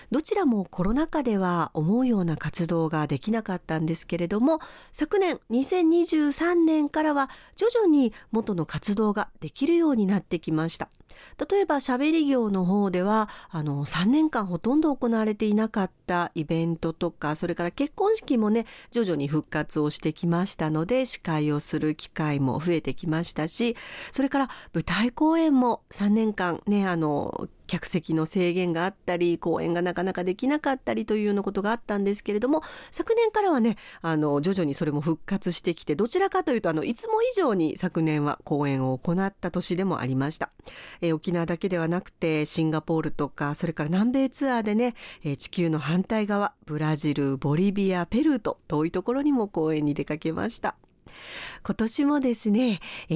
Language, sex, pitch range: Japanese, female, 160-240 Hz